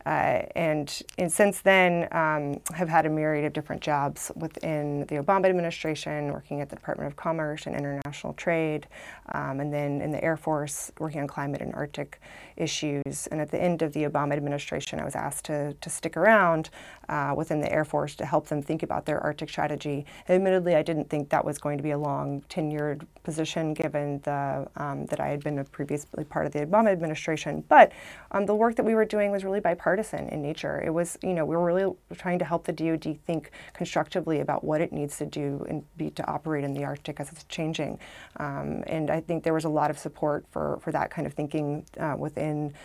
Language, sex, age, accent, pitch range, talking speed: English, female, 30-49, American, 150-170 Hz, 215 wpm